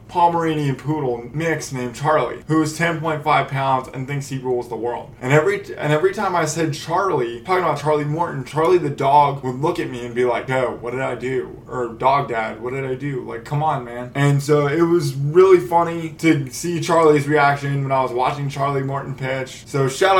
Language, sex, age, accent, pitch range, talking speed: English, male, 20-39, American, 130-165 Hz, 215 wpm